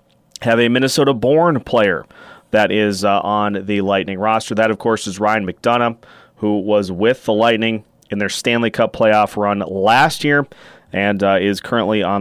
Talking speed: 170 wpm